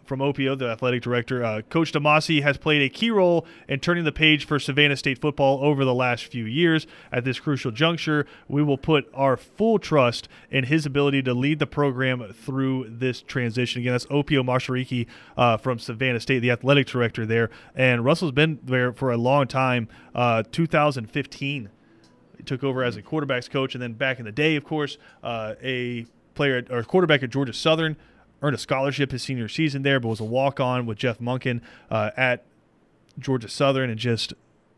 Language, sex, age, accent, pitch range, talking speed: English, male, 30-49, American, 120-145 Hz, 190 wpm